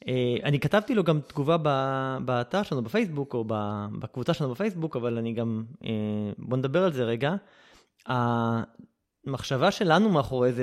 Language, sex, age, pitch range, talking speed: Hebrew, male, 20-39, 120-155 Hz, 145 wpm